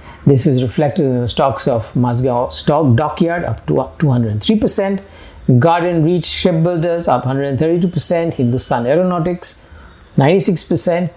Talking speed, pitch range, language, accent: 120 wpm, 125-165 Hz, English, Indian